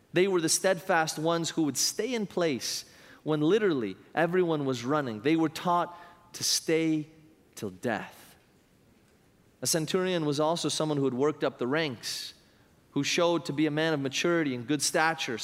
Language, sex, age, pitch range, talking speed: English, male, 30-49, 155-195 Hz, 170 wpm